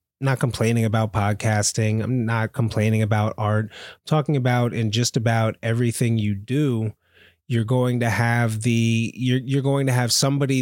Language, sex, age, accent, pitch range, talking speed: English, male, 30-49, American, 105-125 Hz, 165 wpm